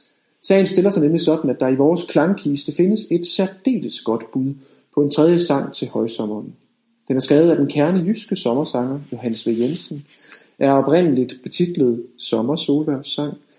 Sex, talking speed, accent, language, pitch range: male, 160 wpm, native, Danish, 125-170 Hz